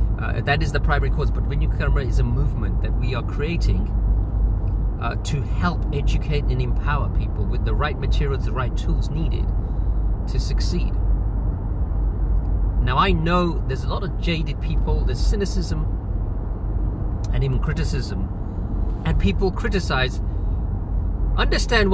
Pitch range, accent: 90-105 Hz, British